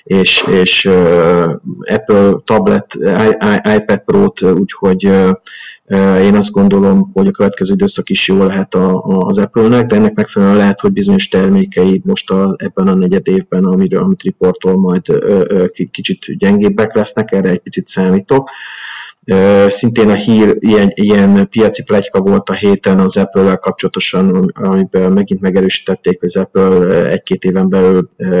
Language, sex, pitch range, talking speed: Hungarian, male, 95-110 Hz, 135 wpm